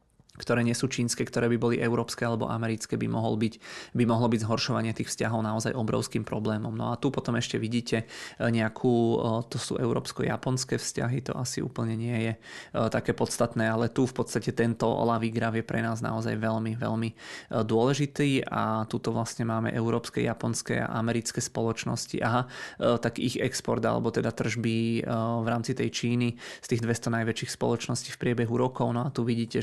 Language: Czech